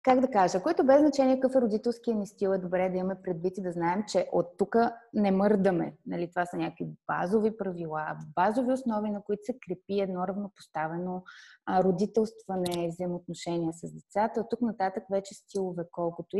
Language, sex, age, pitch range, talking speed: Bulgarian, female, 20-39, 185-240 Hz, 175 wpm